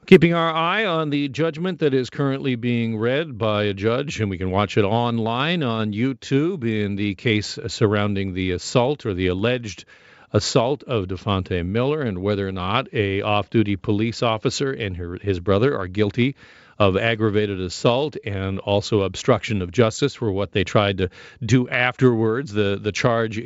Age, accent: 50-69, American